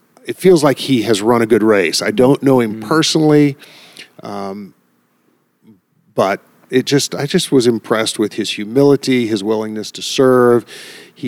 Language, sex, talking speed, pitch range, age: English, male, 155 wpm, 110-150 Hz, 40-59